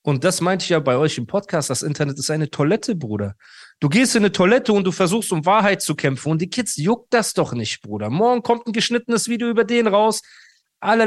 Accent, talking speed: German, 240 wpm